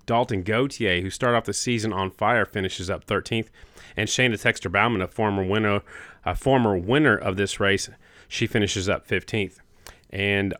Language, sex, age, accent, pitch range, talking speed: English, male, 30-49, American, 95-115 Hz, 155 wpm